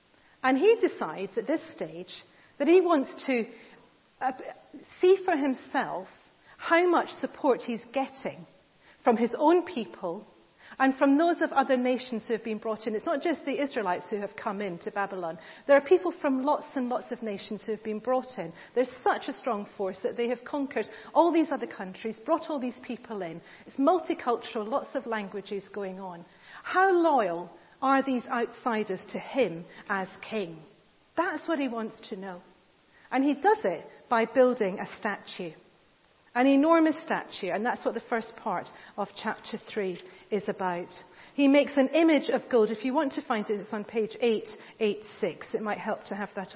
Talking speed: 185 wpm